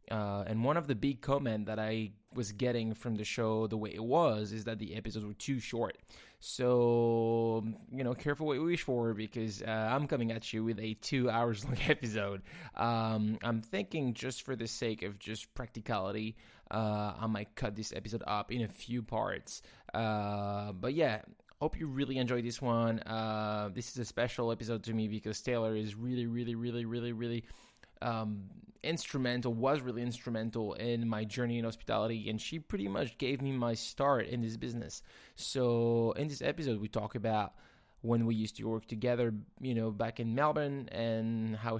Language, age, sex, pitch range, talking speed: English, 20-39, male, 110-120 Hz, 185 wpm